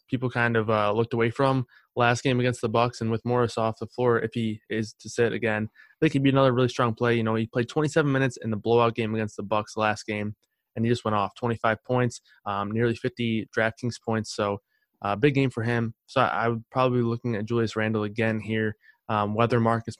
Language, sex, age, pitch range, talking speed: English, male, 20-39, 110-125 Hz, 235 wpm